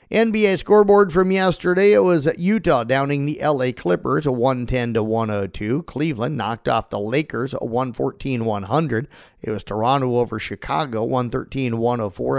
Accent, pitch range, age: American, 125-150 Hz, 50-69